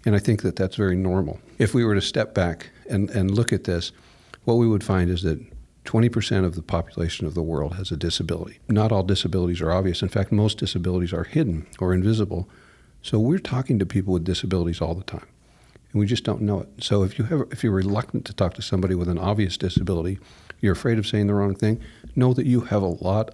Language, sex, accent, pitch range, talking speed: English, male, American, 90-110 Hz, 235 wpm